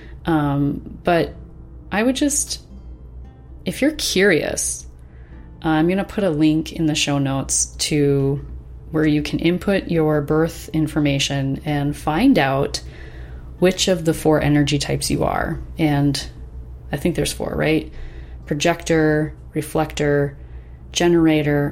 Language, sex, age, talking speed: English, female, 30-49, 130 wpm